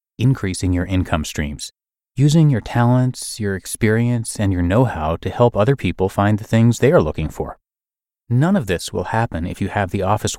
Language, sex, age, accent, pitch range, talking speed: English, male, 30-49, American, 90-130 Hz, 190 wpm